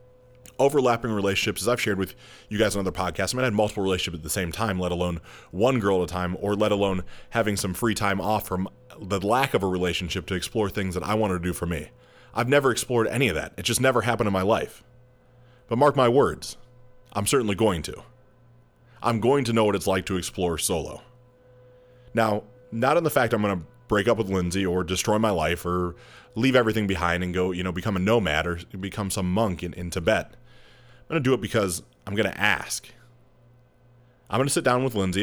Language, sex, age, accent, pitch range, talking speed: English, male, 30-49, American, 95-125 Hz, 230 wpm